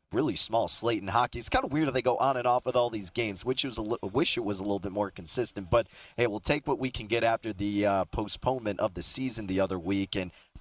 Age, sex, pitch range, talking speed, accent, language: 30-49, male, 110-135 Hz, 290 wpm, American, English